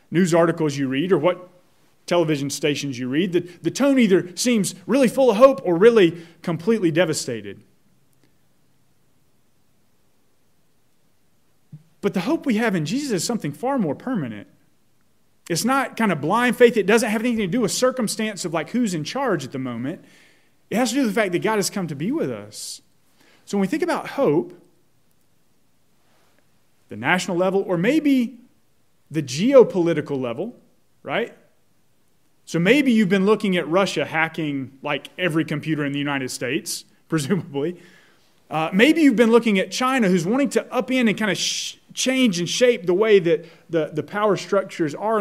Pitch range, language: 160-235 Hz, English